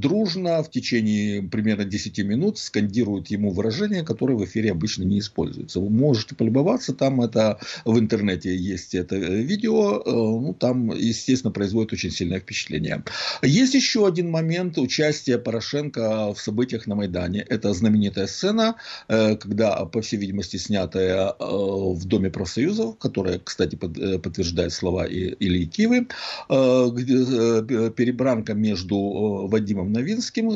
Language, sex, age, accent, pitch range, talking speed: Russian, male, 50-69, native, 100-140 Hz, 125 wpm